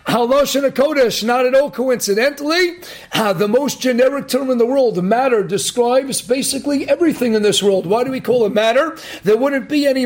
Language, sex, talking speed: English, male, 205 wpm